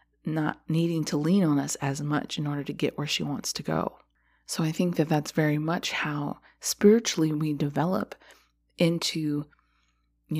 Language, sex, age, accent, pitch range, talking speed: English, female, 30-49, American, 145-170 Hz, 175 wpm